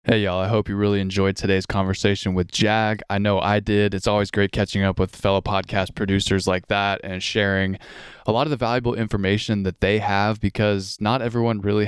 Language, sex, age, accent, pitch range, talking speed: English, male, 20-39, American, 95-115 Hz, 205 wpm